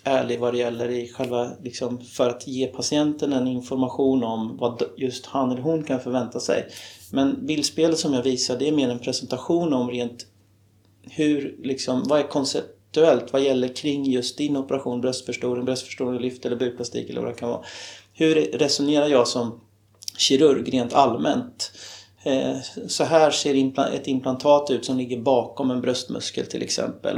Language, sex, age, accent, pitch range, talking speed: Swedish, male, 30-49, native, 120-135 Hz, 165 wpm